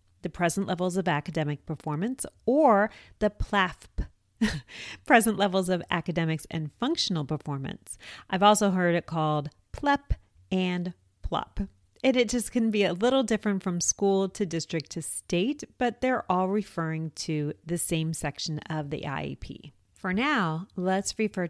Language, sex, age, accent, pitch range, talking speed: English, female, 40-59, American, 165-215 Hz, 150 wpm